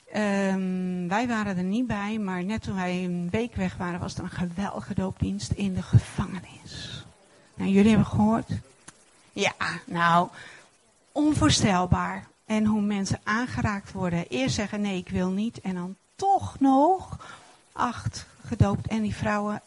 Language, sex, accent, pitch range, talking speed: Dutch, female, Dutch, 175-215 Hz, 145 wpm